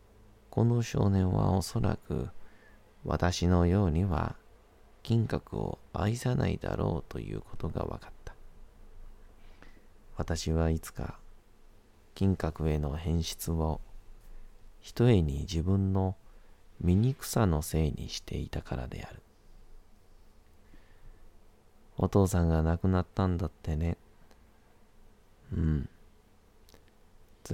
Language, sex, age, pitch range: Japanese, male, 40-59, 80-100 Hz